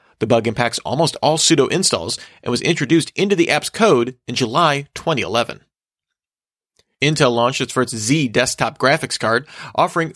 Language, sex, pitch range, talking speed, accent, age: English, male, 120-160 Hz, 150 wpm, American, 40-59